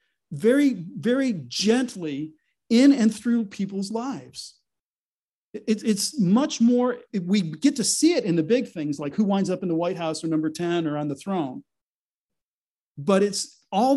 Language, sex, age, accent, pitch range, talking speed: English, male, 40-59, American, 155-210 Hz, 165 wpm